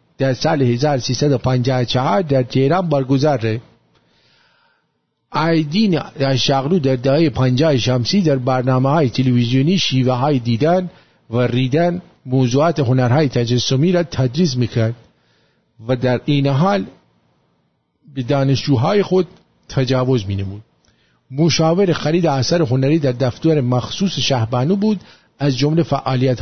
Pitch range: 130-170 Hz